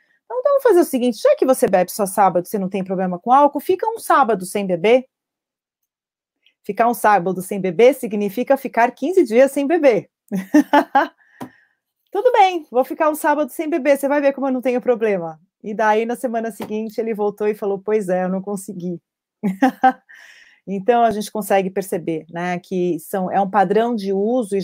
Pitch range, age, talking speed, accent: 190-235 Hz, 30-49, 190 wpm, Brazilian